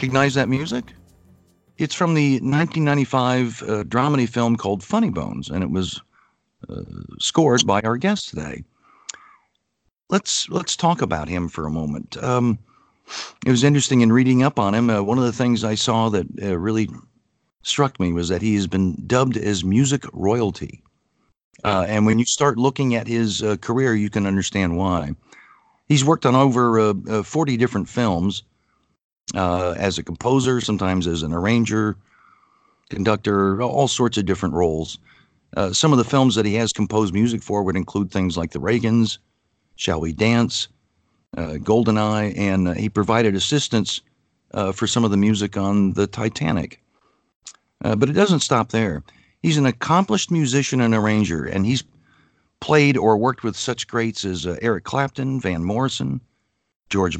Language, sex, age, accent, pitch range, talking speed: English, male, 50-69, American, 95-130 Hz, 170 wpm